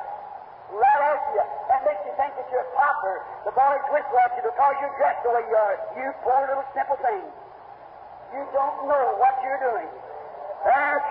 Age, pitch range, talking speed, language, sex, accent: 50-69, 270-295 Hz, 180 wpm, English, male, American